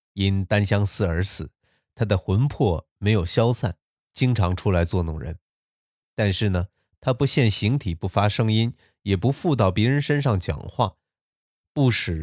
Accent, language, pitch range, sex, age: native, Chinese, 90-125 Hz, male, 20-39